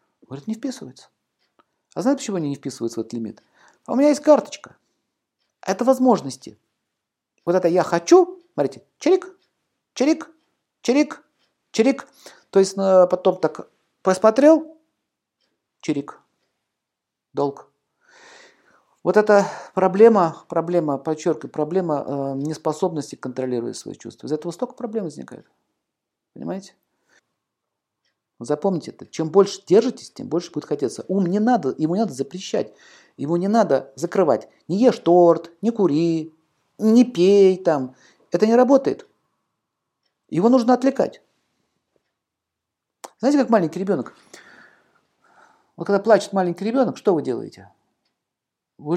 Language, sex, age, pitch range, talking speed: Russian, male, 50-69, 165-250 Hz, 125 wpm